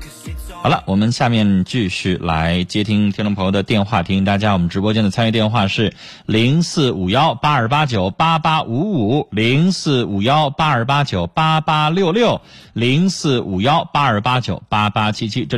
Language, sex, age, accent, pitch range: Chinese, male, 30-49, native, 95-145 Hz